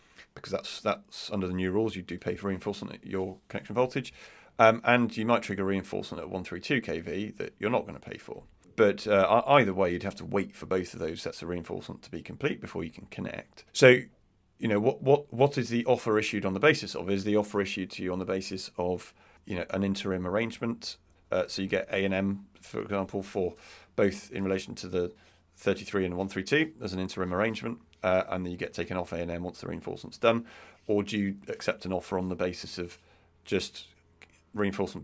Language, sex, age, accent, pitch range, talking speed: English, male, 40-59, British, 90-105 Hz, 220 wpm